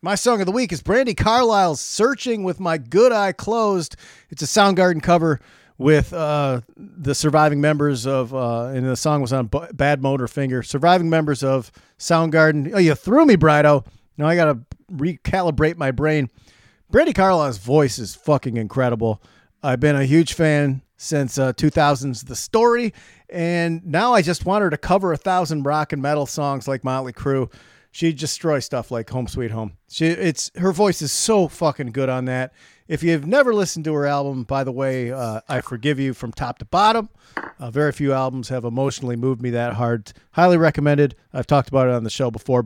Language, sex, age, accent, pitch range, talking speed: English, male, 40-59, American, 130-190 Hz, 195 wpm